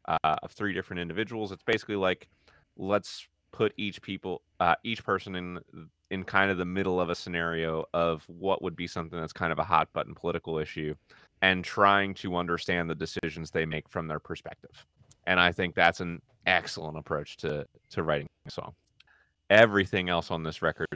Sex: male